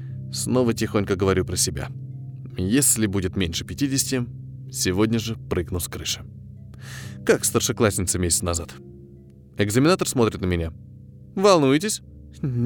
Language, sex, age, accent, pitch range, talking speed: Russian, male, 20-39, native, 105-155 Hz, 110 wpm